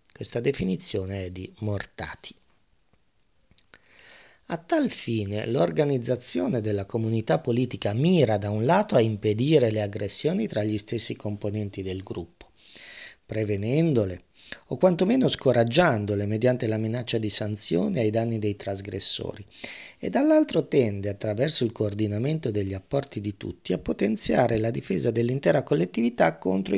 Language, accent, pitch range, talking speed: Italian, native, 100-125 Hz, 125 wpm